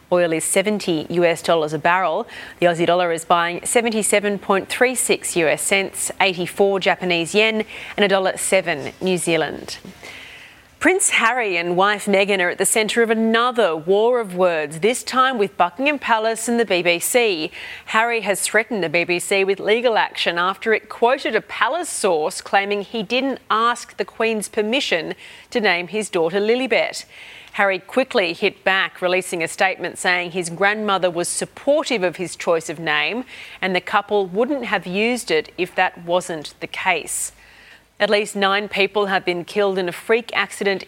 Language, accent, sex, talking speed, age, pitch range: English, Australian, female, 165 wpm, 30-49, 180-225 Hz